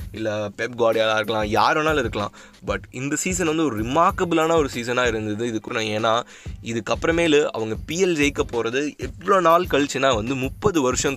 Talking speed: 150 wpm